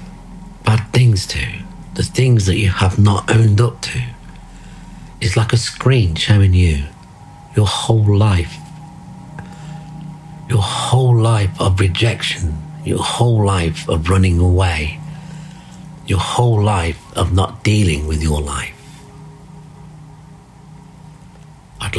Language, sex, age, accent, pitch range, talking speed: English, male, 50-69, British, 90-120 Hz, 115 wpm